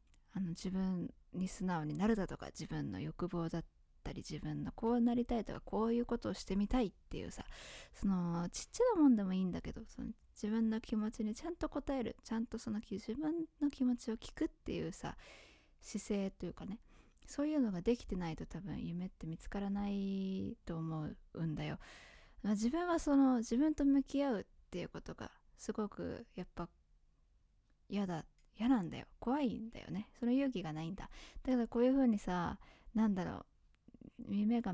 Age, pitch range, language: 20-39, 175-240 Hz, Japanese